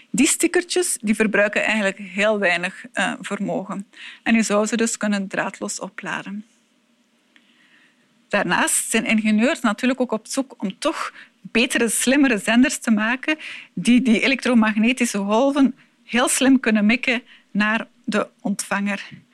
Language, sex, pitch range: Dutch, female, 210-250 Hz